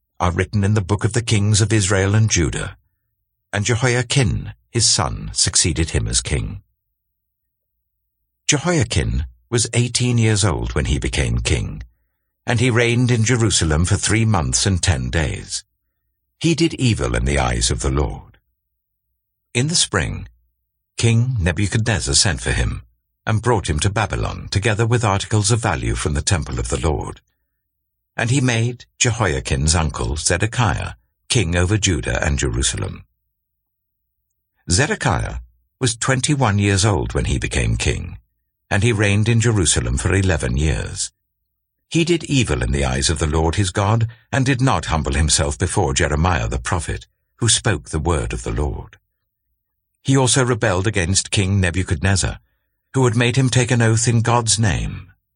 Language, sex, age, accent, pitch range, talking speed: English, male, 60-79, British, 80-115 Hz, 155 wpm